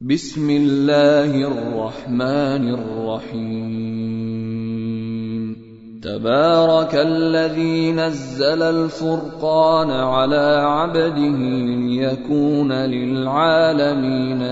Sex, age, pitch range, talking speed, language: male, 30-49, 145-165 Hz, 50 wpm, Arabic